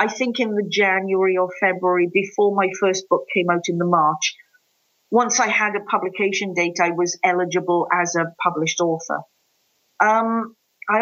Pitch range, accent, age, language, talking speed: 185-235 Hz, British, 40-59, English, 170 wpm